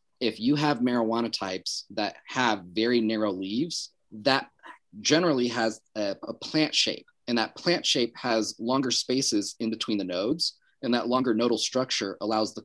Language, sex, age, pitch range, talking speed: English, male, 30-49, 105-135 Hz, 165 wpm